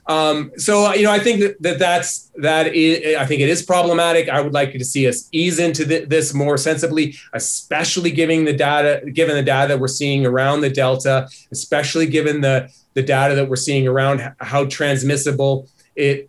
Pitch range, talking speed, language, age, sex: 130-160 Hz, 205 wpm, English, 30-49, male